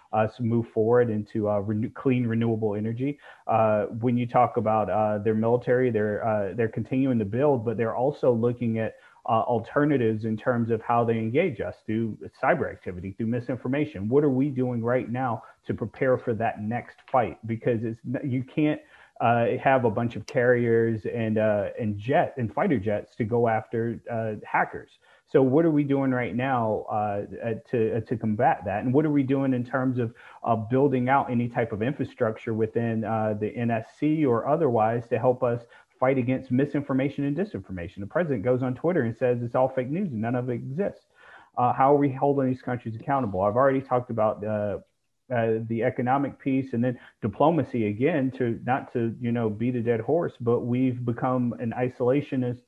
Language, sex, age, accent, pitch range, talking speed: English, male, 30-49, American, 110-130 Hz, 190 wpm